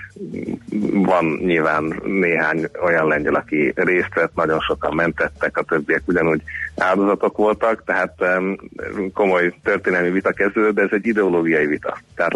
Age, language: 30-49, Hungarian